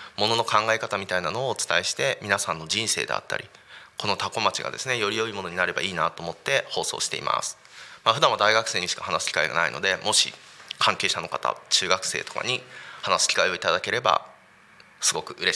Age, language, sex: 20-39, Japanese, male